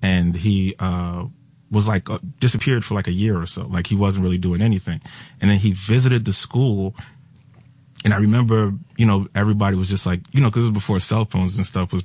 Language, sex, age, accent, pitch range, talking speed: Italian, male, 30-49, American, 100-130 Hz, 225 wpm